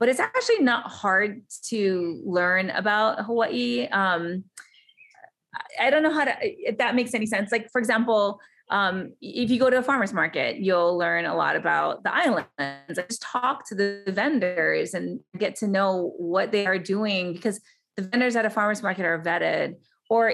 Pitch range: 185-240 Hz